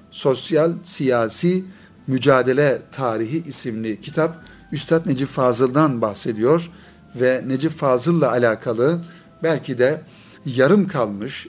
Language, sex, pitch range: Turkish, male, 130-175 Hz